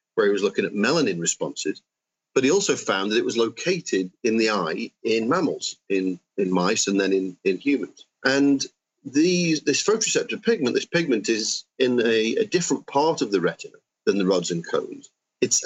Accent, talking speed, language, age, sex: British, 190 wpm, English, 40-59, male